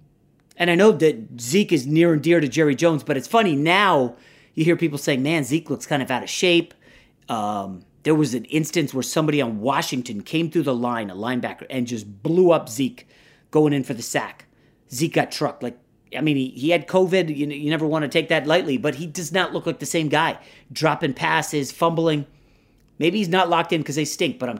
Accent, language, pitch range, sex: American, English, 125-165 Hz, male